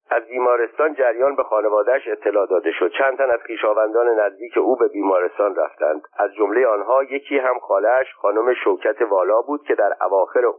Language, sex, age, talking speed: Persian, male, 50-69, 170 wpm